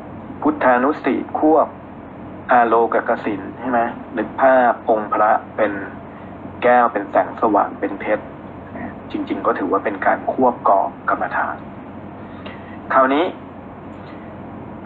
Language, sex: Thai, male